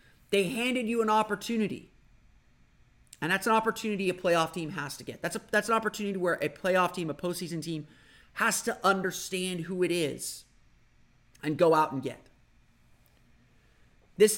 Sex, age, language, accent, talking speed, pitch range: male, 30-49, English, American, 160 wpm, 160-200 Hz